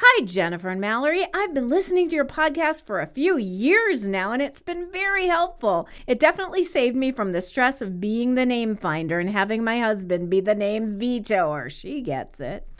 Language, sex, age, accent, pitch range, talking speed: English, female, 40-59, American, 180-290 Hz, 200 wpm